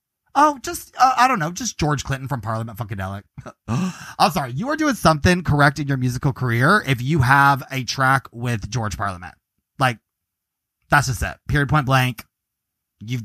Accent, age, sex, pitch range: American, 30-49, male, 130-195 Hz